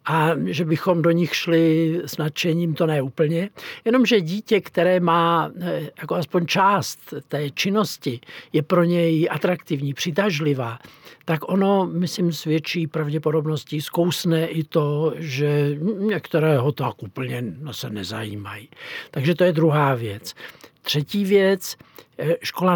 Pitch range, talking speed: 150-180 Hz, 125 wpm